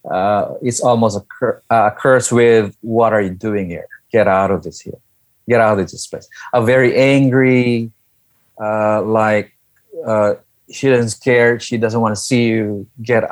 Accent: Filipino